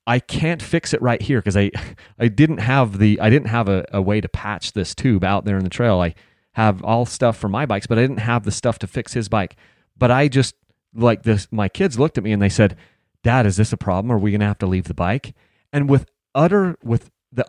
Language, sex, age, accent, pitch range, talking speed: English, male, 30-49, American, 105-140 Hz, 260 wpm